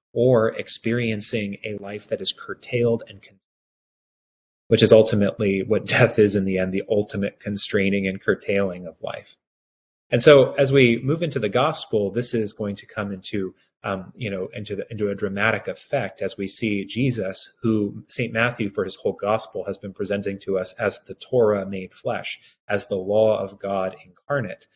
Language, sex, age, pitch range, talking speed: English, male, 30-49, 100-120 Hz, 180 wpm